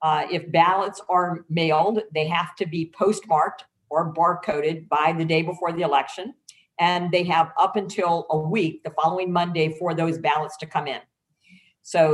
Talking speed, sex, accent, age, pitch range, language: 175 wpm, female, American, 50-69, 160-190 Hz, English